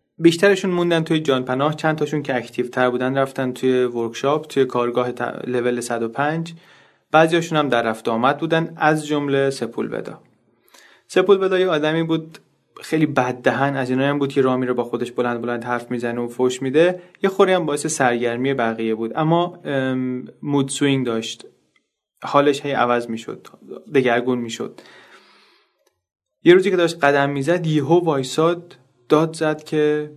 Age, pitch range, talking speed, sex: 30-49, 125-160 Hz, 155 wpm, male